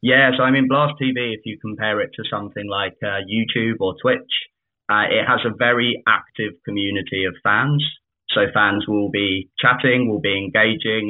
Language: English